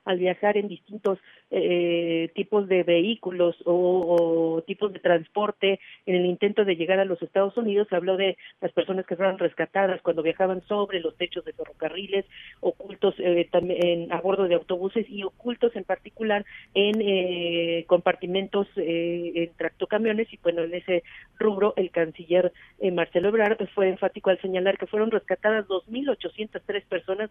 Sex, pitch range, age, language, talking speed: female, 175-210 Hz, 40-59, Spanish, 165 wpm